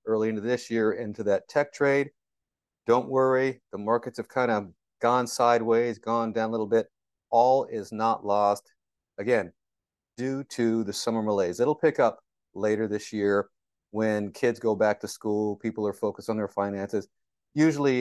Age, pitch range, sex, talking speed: 40-59, 105-125 Hz, male, 170 wpm